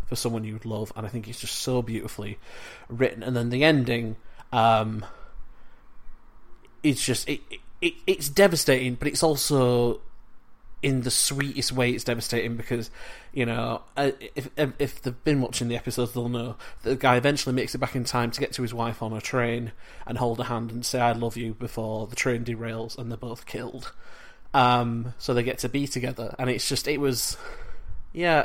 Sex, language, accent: male, English, British